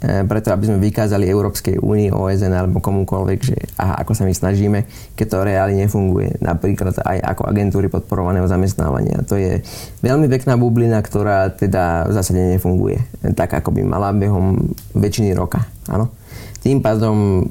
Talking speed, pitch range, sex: 155 wpm, 100-115 Hz, male